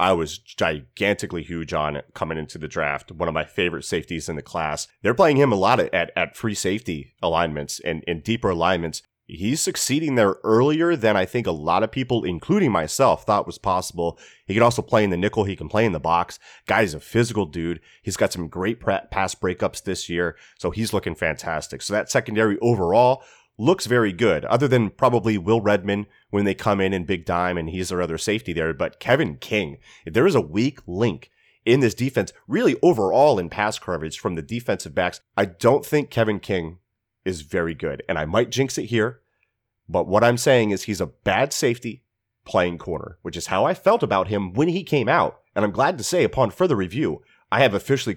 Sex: male